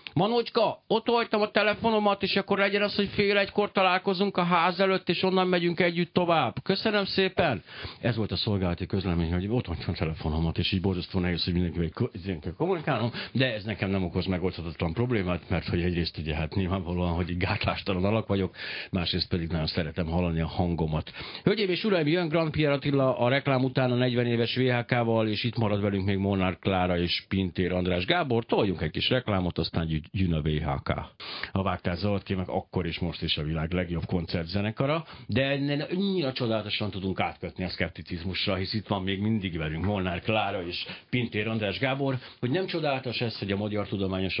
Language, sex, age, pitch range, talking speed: Hungarian, male, 60-79, 90-130 Hz, 180 wpm